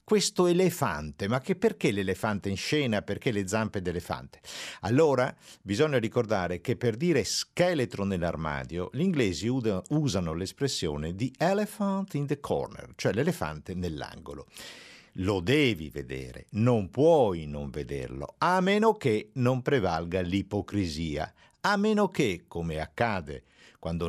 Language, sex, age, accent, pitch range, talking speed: Italian, male, 50-69, native, 85-135 Hz, 125 wpm